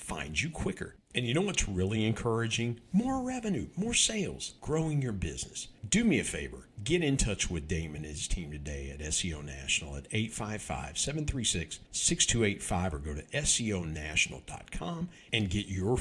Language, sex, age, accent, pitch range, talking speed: English, male, 50-69, American, 100-155 Hz, 155 wpm